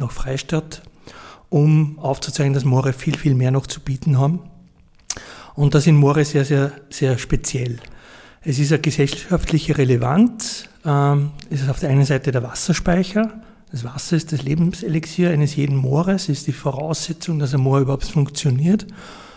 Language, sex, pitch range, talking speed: German, male, 140-160 Hz, 160 wpm